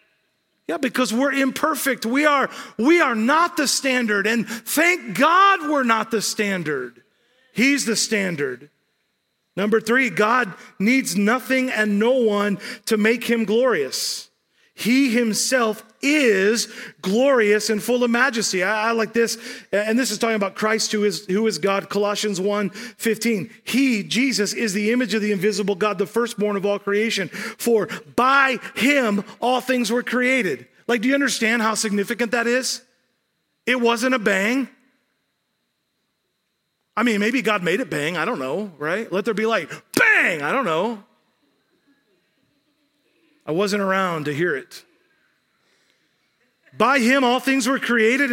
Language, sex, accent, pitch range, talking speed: English, male, American, 205-255 Hz, 150 wpm